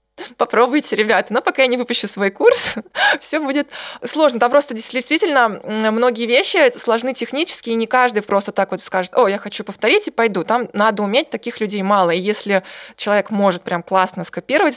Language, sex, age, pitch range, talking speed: English, female, 20-39, 200-260 Hz, 185 wpm